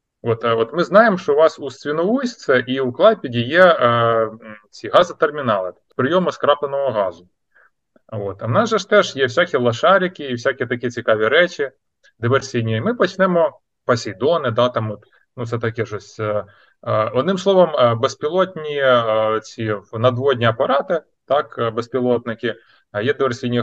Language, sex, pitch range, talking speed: Ukrainian, male, 120-185 Hz, 150 wpm